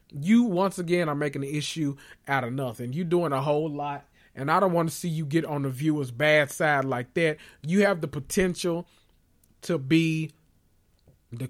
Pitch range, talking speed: 135-175 Hz, 195 wpm